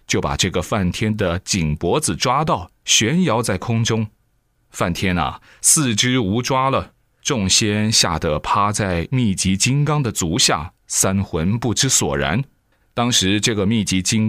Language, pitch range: Chinese, 95-125 Hz